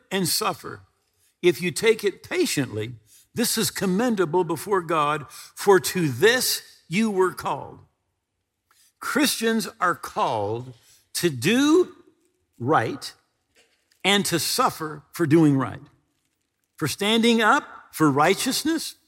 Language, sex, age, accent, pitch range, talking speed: English, male, 50-69, American, 150-225 Hz, 110 wpm